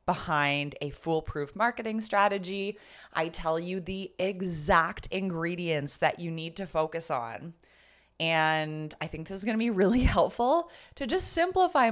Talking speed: 145 wpm